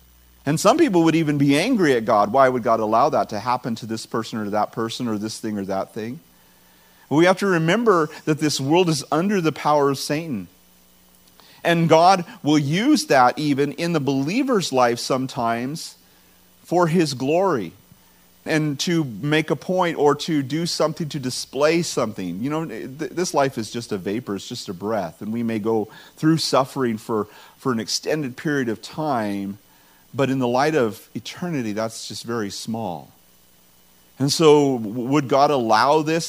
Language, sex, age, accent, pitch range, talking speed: English, male, 40-59, American, 110-150 Hz, 180 wpm